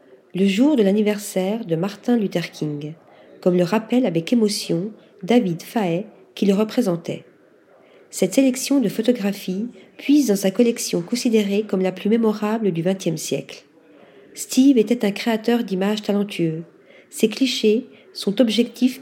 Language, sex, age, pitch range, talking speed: French, female, 40-59, 195-245 Hz, 140 wpm